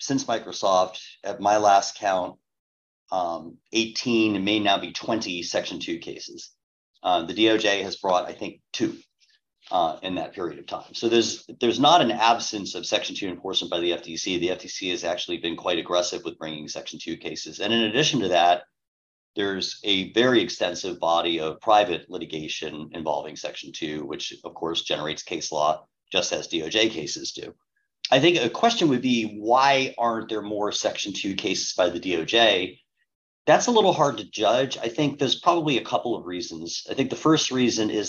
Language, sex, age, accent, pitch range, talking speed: English, male, 40-59, American, 90-130 Hz, 185 wpm